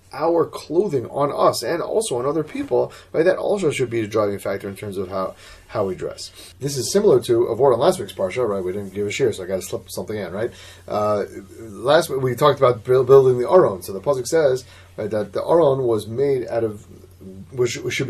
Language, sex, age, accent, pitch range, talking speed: English, male, 30-49, American, 100-140 Hz, 240 wpm